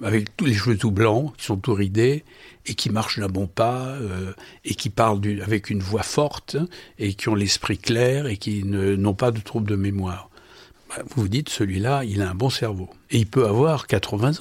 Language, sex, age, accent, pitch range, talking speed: French, male, 60-79, French, 105-135 Hz, 220 wpm